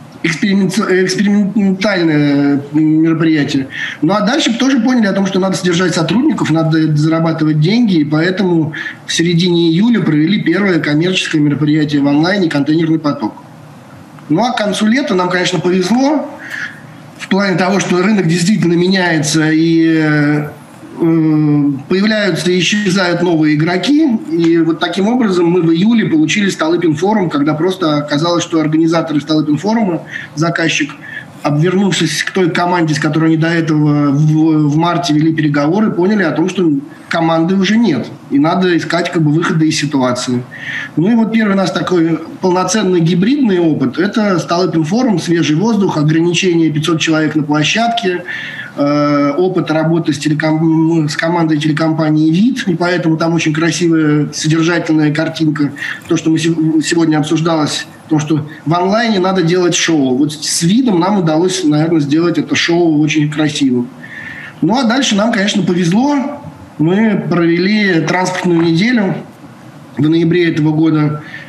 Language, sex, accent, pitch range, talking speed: Russian, male, native, 155-185 Hz, 145 wpm